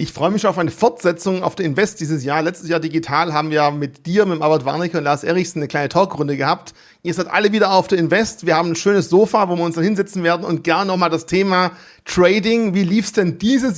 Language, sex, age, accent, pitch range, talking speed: German, male, 40-59, German, 160-195 Hz, 255 wpm